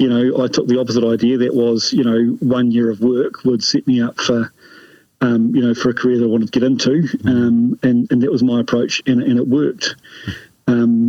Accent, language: British, English